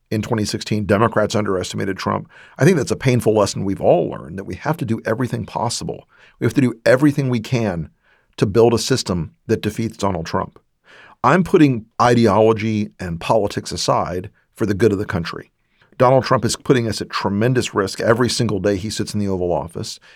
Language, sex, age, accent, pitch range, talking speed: English, male, 50-69, American, 100-125 Hz, 195 wpm